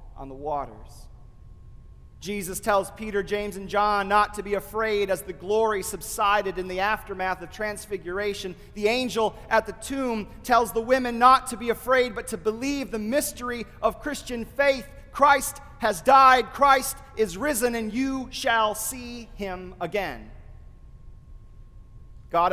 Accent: American